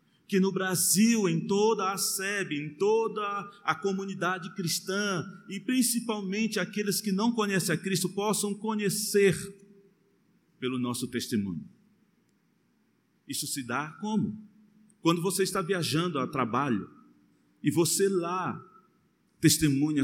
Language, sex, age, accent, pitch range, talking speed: Portuguese, male, 40-59, Brazilian, 125-195 Hz, 115 wpm